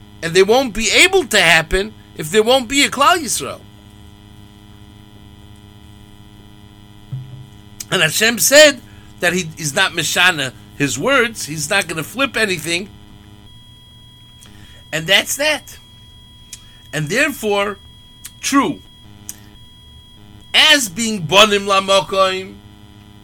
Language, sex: English, male